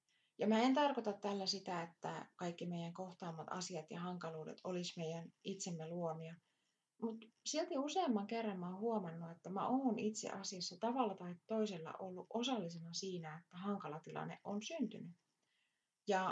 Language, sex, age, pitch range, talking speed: Finnish, female, 30-49, 165-210 Hz, 150 wpm